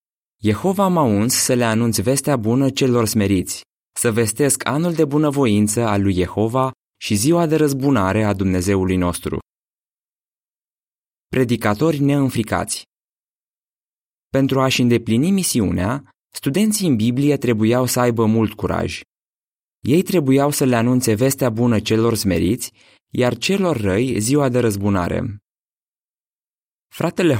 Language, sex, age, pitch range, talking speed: Romanian, male, 20-39, 105-135 Hz, 120 wpm